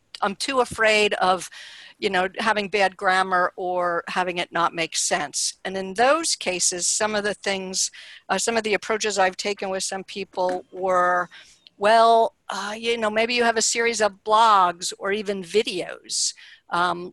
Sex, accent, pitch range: female, American, 185-225 Hz